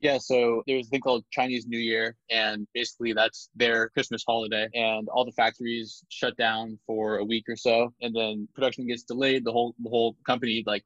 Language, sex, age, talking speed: English, male, 20-39, 210 wpm